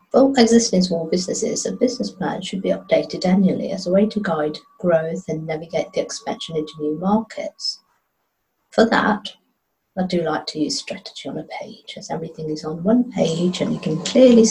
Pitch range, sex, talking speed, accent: 160-215 Hz, female, 185 wpm, British